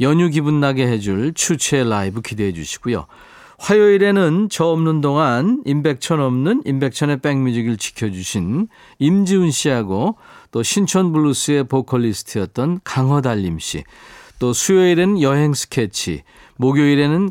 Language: Korean